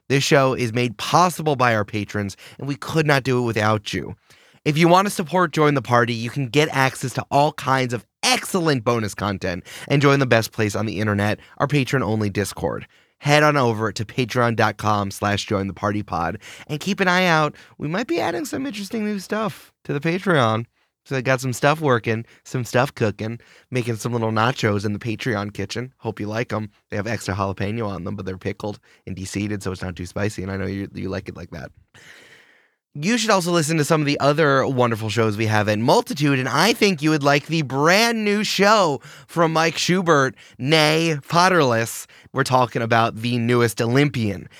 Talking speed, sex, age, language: 205 wpm, male, 20-39, English